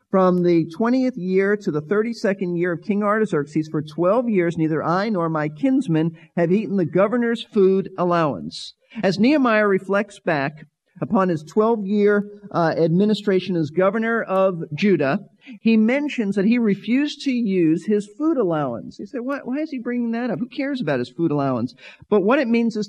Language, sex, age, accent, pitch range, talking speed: English, male, 40-59, American, 175-230 Hz, 180 wpm